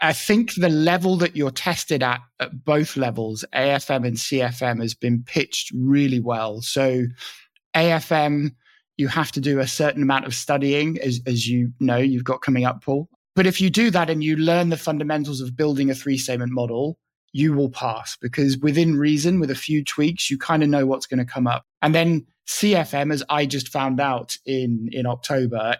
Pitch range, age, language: 130-155 Hz, 20-39, English